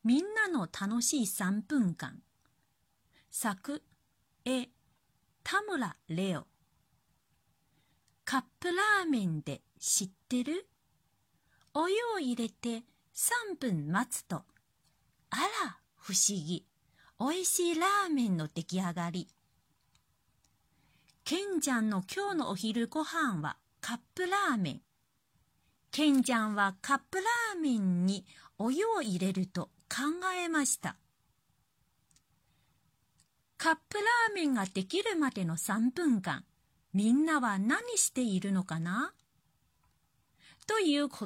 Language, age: Chinese, 40-59